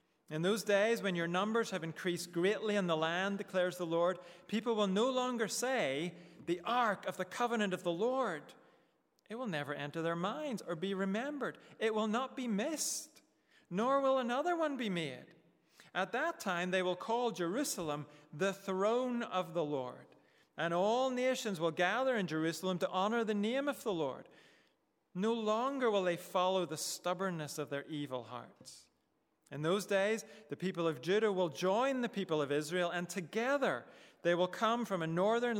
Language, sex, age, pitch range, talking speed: English, male, 40-59, 175-230 Hz, 180 wpm